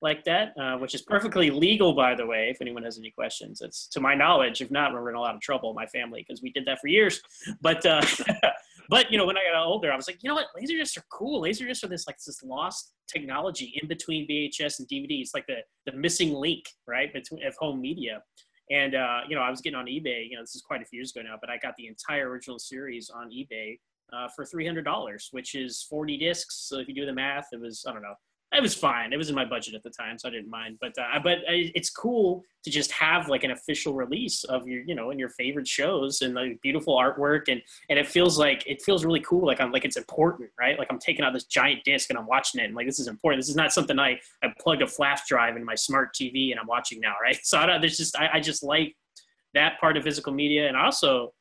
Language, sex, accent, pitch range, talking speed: English, male, American, 125-165 Hz, 270 wpm